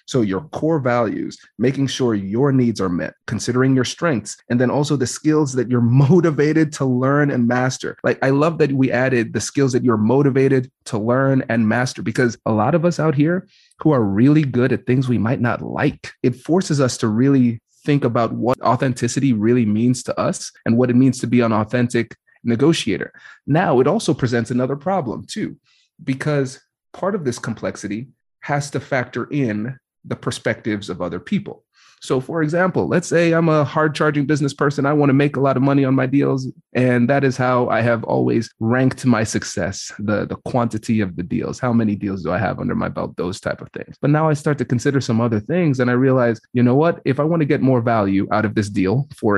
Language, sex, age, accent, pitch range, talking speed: English, male, 30-49, American, 115-145 Hz, 215 wpm